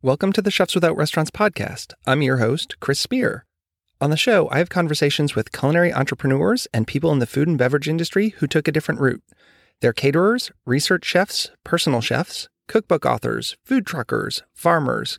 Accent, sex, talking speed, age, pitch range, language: American, male, 180 wpm, 30-49, 120-155 Hz, English